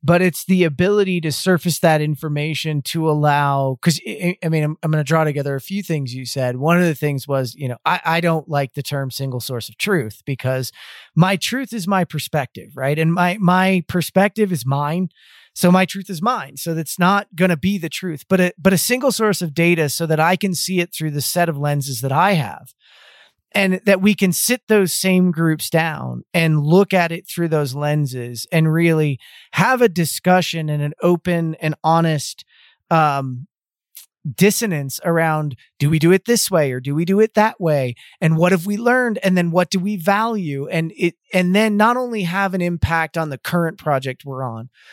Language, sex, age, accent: English, male, 30-49, American